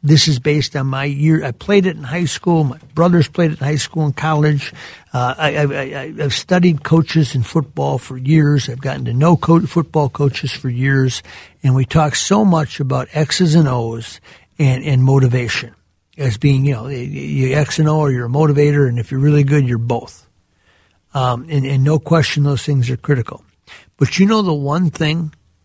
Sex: male